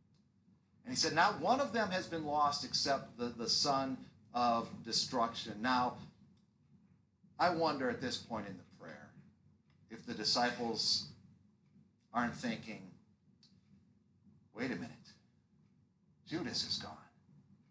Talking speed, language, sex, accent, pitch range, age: 120 wpm, English, male, American, 145-200 Hz, 50-69